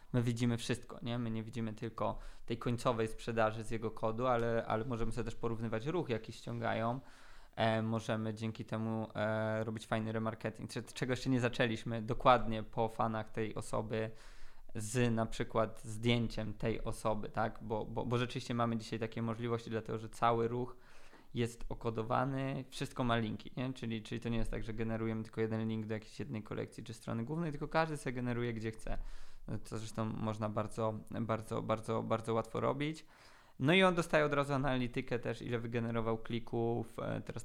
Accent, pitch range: native, 110-125 Hz